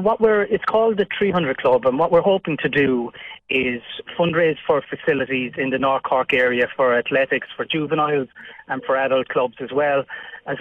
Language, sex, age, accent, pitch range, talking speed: English, male, 30-49, Irish, 130-155 Hz, 175 wpm